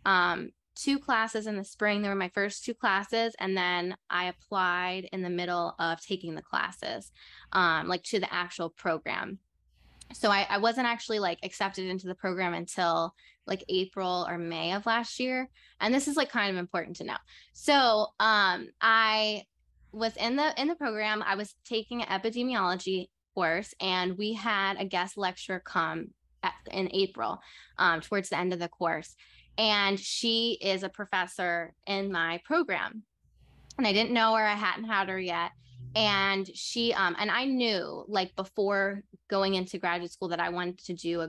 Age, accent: 10-29, American